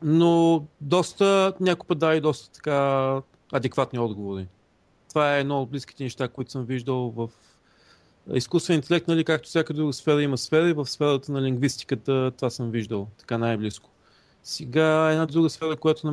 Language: Bulgarian